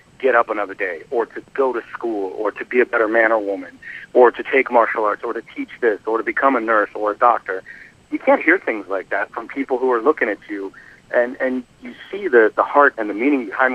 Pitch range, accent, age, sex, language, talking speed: 110-160 Hz, American, 40-59, male, English, 255 wpm